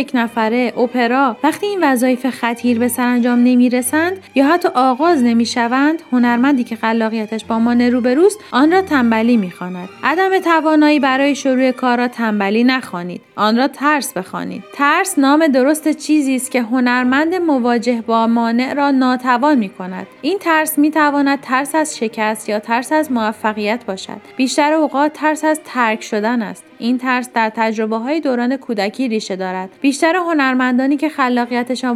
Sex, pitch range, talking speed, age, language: female, 230-295 Hz, 160 wpm, 30-49, Persian